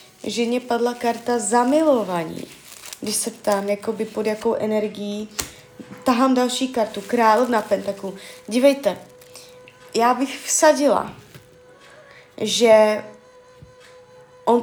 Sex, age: female, 20-39